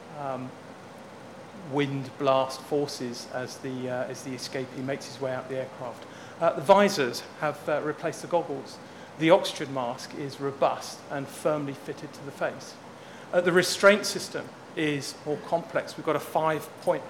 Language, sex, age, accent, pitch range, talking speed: English, male, 40-59, British, 140-175 Hz, 160 wpm